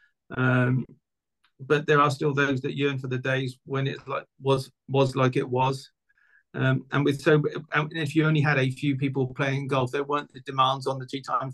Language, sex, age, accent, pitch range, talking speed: English, male, 40-59, British, 125-145 Hz, 215 wpm